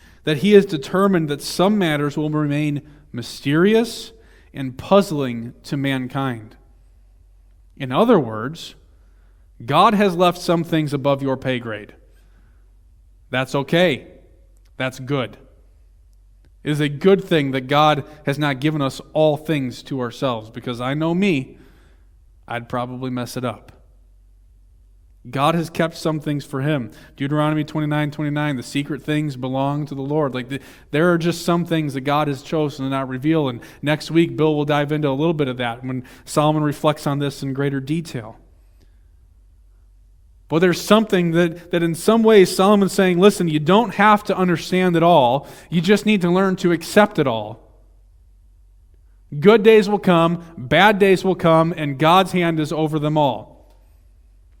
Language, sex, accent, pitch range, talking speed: English, male, American, 110-165 Hz, 160 wpm